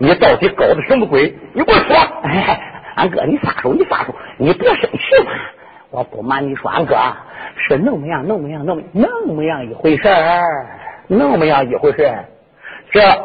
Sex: male